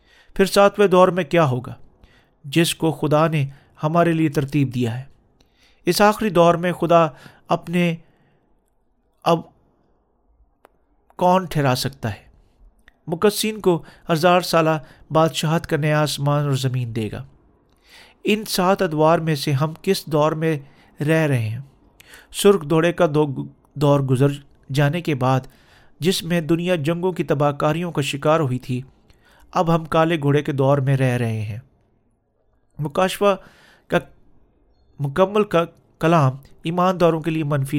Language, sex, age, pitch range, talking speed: Urdu, male, 40-59, 135-175 Hz, 140 wpm